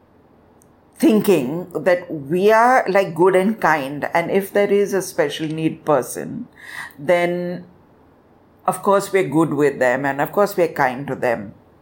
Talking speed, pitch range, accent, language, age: 150 wpm, 150-190 Hz, Indian, English, 60-79